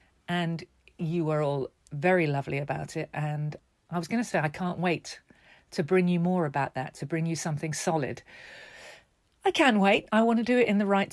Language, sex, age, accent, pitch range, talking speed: English, female, 50-69, British, 150-195 Hz, 210 wpm